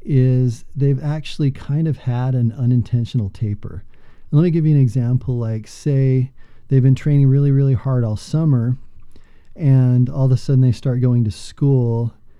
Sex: male